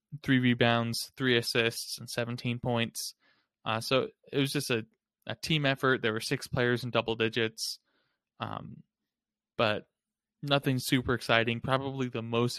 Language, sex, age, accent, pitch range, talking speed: English, male, 20-39, American, 115-135 Hz, 150 wpm